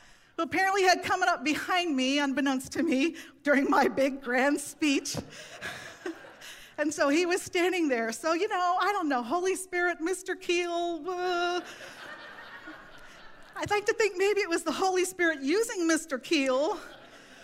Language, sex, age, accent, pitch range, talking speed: English, female, 40-59, American, 225-315 Hz, 150 wpm